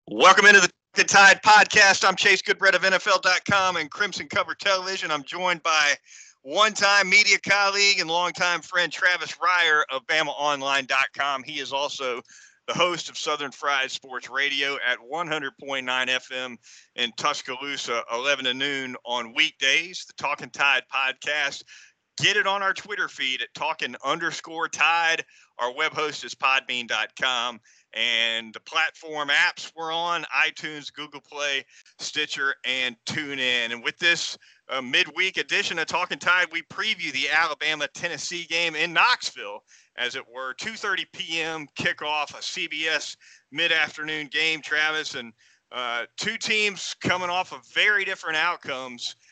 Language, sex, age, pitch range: English, male, 40-59, 140-175 Hz